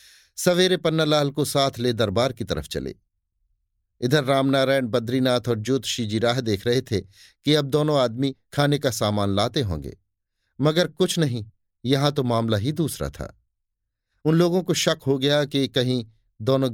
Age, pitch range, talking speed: 50-69, 100-145 Hz, 165 wpm